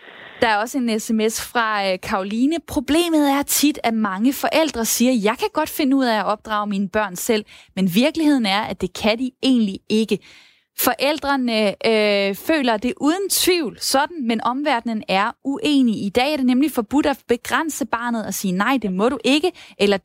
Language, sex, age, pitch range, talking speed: Danish, female, 20-39, 215-280 Hz, 190 wpm